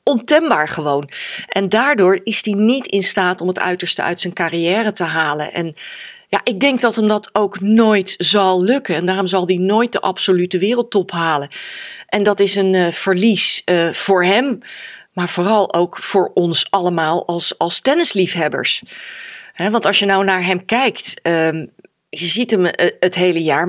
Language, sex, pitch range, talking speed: Dutch, female, 175-210 Hz, 175 wpm